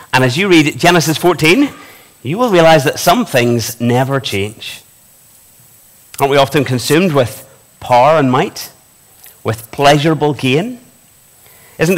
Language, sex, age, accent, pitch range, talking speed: English, male, 30-49, British, 110-165 Hz, 130 wpm